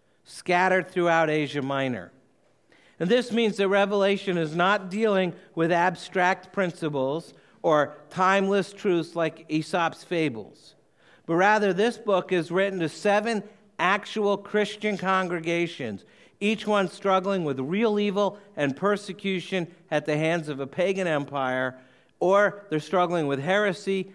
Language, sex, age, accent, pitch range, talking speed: English, male, 50-69, American, 150-195 Hz, 130 wpm